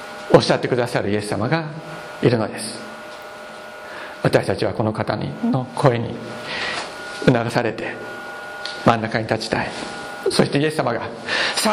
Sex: male